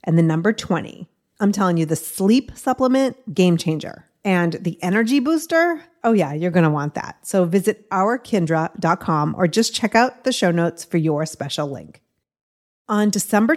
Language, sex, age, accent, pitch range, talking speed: English, female, 30-49, American, 175-230 Hz, 175 wpm